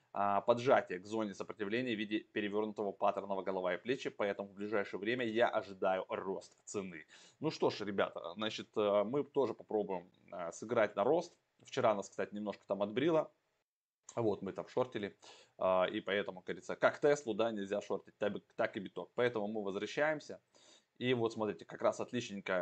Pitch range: 95-115 Hz